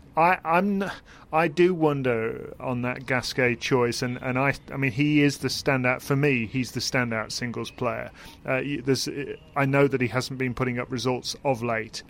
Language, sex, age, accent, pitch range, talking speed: English, male, 30-49, British, 120-140 Hz, 190 wpm